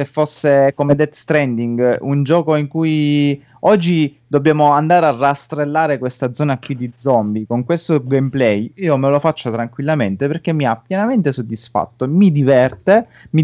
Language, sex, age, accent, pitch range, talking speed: Italian, male, 30-49, native, 120-150 Hz, 150 wpm